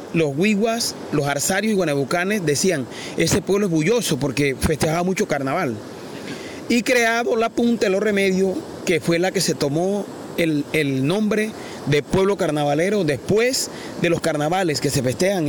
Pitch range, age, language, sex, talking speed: 160-205 Hz, 30-49, Spanish, male, 160 wpm